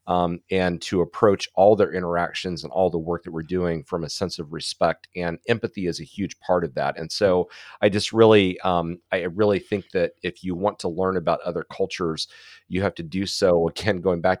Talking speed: 220 wpm